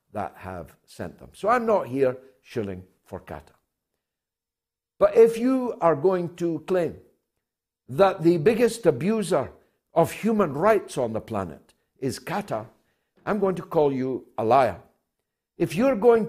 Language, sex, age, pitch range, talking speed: English, male, 60-79, 150-210 Hz, 145 wpm